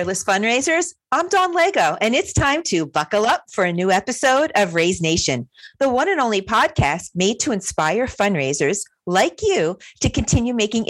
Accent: American